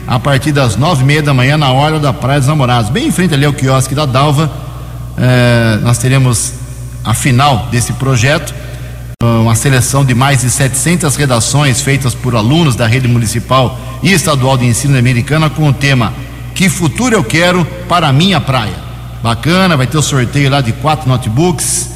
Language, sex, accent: Portuguese, male, Brazilian